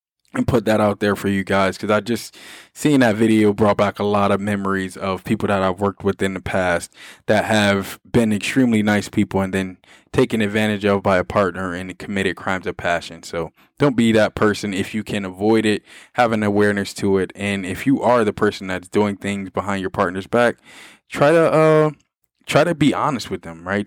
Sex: male